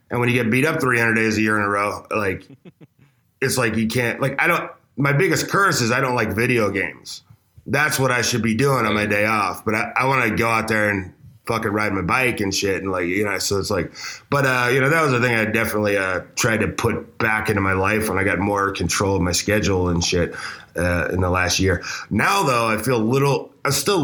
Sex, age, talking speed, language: male, 20-39, 255 wpm, English